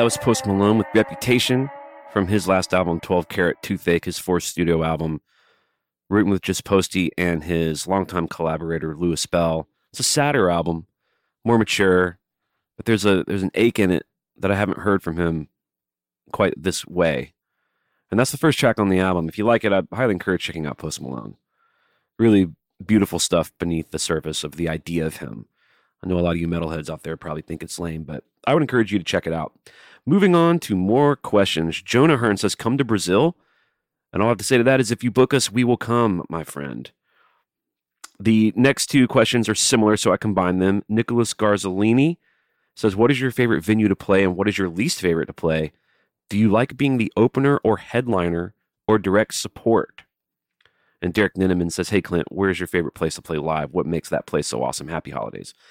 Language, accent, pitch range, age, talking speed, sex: English, American, 85-110 Hz, 30-49, 205 wpm, male